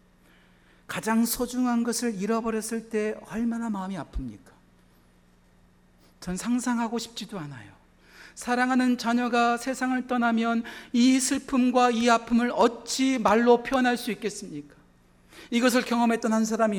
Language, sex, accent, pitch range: Korean, male, native, 165-245 Hz